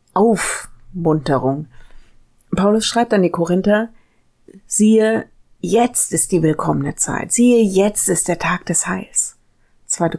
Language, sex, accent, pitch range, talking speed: German, female, German, 160-210 Hz, 120 wpm